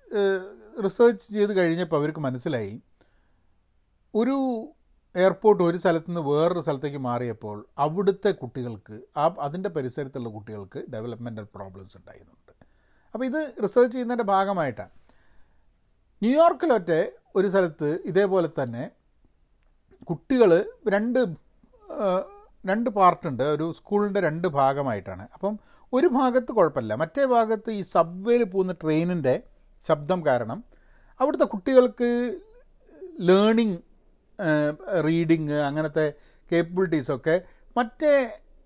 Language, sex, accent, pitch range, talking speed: Malayalam, male, native, 130-210 Hz, 90 wpm